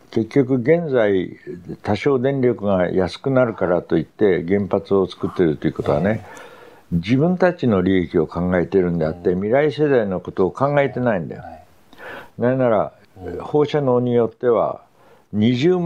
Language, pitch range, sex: Japanese, 95-135 Hz, male